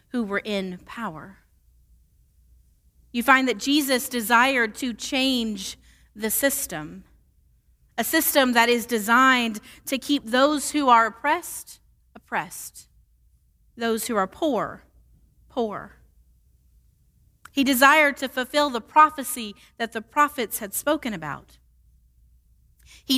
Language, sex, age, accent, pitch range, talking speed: English, female, 30-49, American, 190-275 Hz, 110 wpm